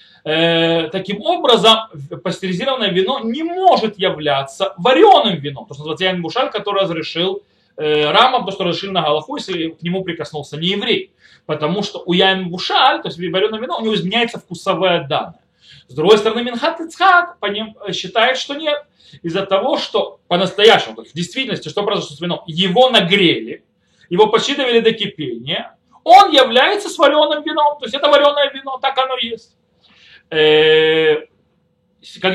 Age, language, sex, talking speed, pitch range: 30-49, Russian, male, 150 wpm, 165-260 Hz